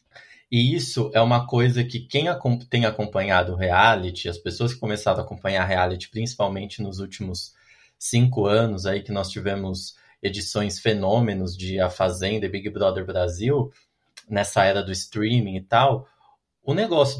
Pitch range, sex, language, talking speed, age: 105-135 Hz, male, Portuguese, 150 wpm, 20-39